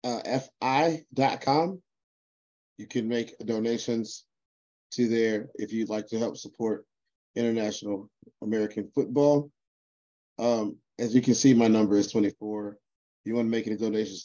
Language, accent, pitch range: English, American, 105-120 Hz